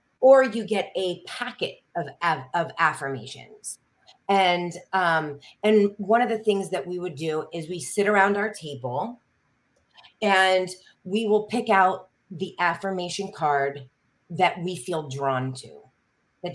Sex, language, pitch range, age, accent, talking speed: female, English, 165-215 Hz, 30-49, American, 140 wpm